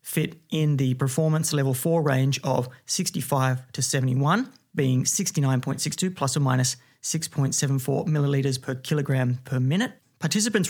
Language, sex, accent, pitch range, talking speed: English, male, Australian, 130-165 Hz, 130 wpm